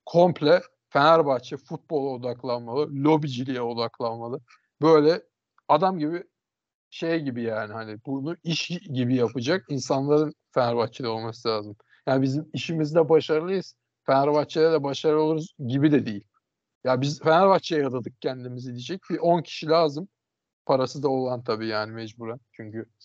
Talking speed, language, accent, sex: 130 wpm, Turkish, native, male